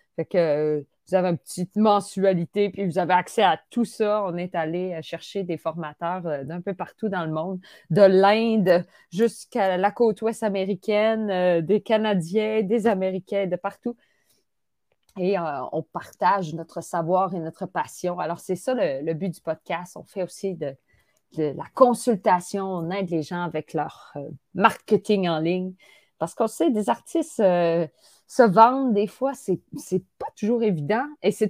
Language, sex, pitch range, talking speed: English, female, 175-220 Hz, 175 wpm